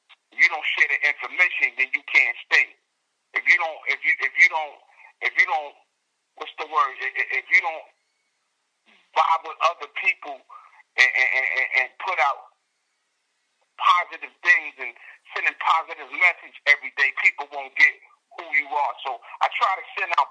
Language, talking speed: English, 170 wpm